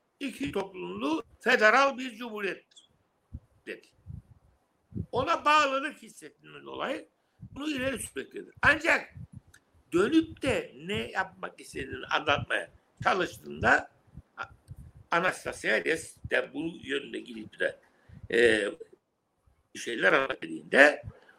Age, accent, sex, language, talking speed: 60-79, native, male, Turkish, 80 wpm